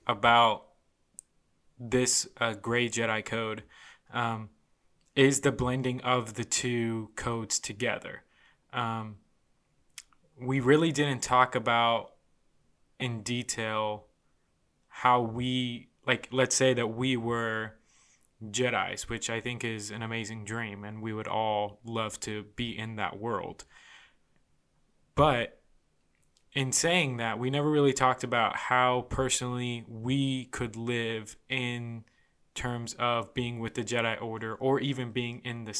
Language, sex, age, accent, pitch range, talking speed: English, male, 20-39, American, 115-130 Hz, 125 wpm